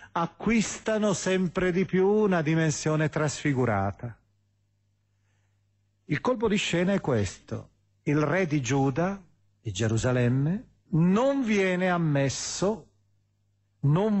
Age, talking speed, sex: 40-59, 95 wpm, male